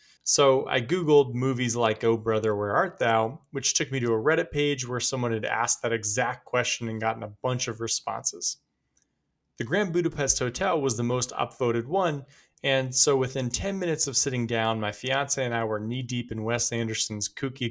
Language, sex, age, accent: English, male, 30-49, American